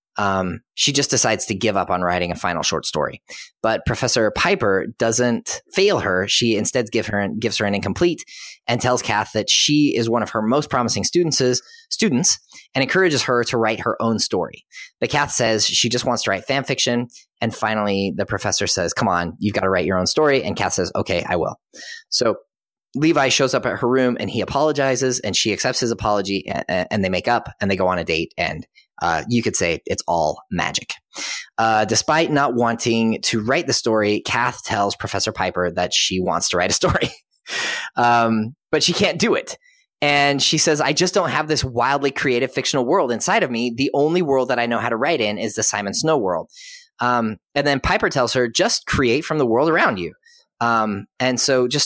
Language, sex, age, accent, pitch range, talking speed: English, male, 30-49, American, 105-140 Hz, 210 wpm